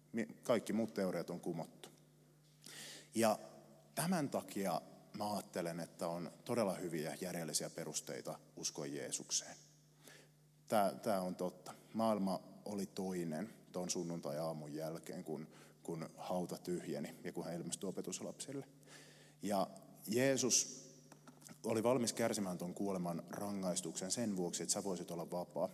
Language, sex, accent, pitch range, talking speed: Finnish, male, native, 80-130 Hz, 120 wpm